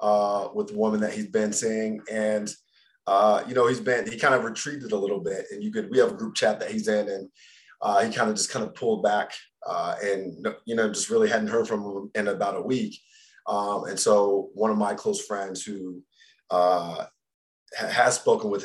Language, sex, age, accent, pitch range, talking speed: English, male, 30-49, American, 100-140 Hz, 220 wpm